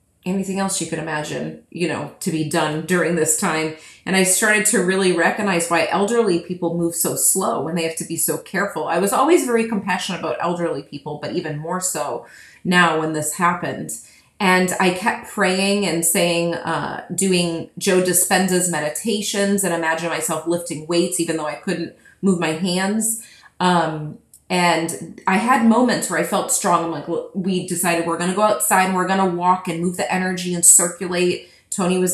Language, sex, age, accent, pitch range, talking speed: English, female, 30-49, American, 165-195 Hz, 190 wpm